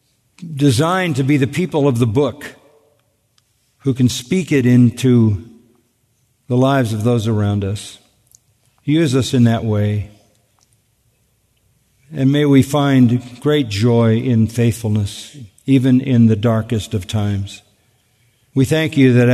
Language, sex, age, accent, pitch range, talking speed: English, male, 50-69, American, 110-130 Hz, 130 wpm